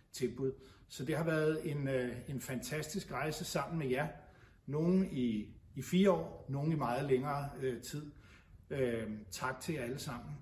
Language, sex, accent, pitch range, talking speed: Danish, male, native, 125-155 Hz, 165 wpm